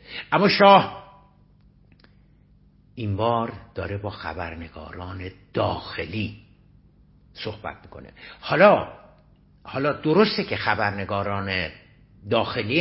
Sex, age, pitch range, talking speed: male, 60-79, 100-125 Hz, 75 wpm